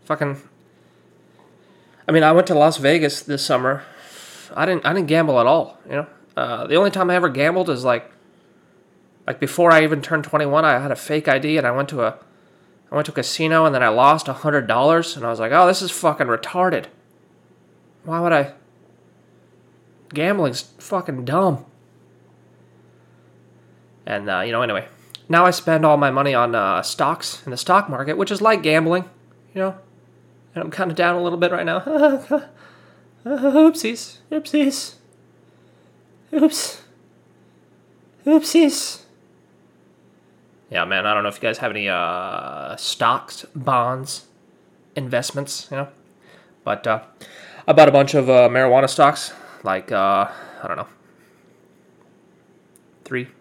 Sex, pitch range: male, 140-185 Hz